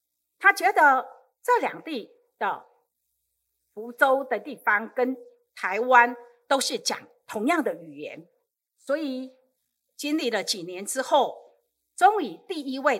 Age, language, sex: 50-69, Chinese, female